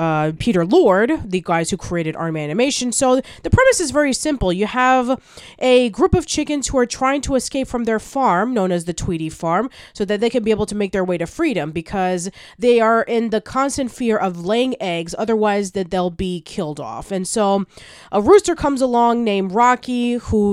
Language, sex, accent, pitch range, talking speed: English, female, American, 180-245 Hz, 210 wpm